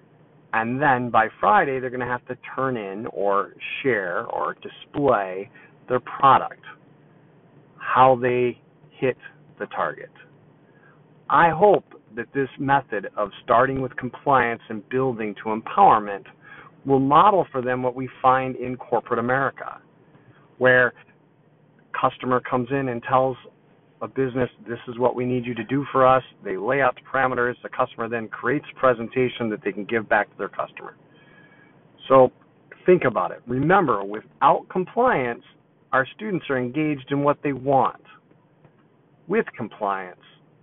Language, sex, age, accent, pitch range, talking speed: English, male, 50-69, American, 120-150 Hz, 145 wpm